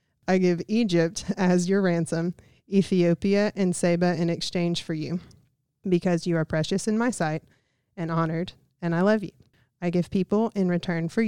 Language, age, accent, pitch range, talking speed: English, 30-49, American, 155-185 Hz, 170 wpm